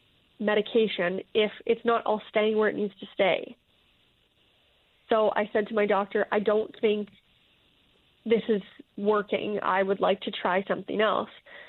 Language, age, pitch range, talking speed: English, 20-39, 195-230 Hz, 155 wpm